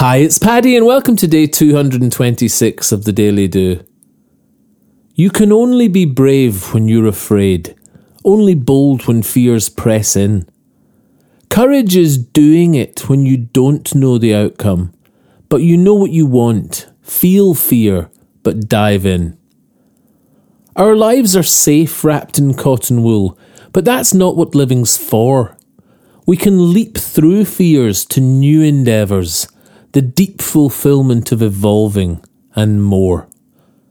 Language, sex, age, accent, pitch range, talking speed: English, male, 30-49, British, 110-175 Hz, 135 wpm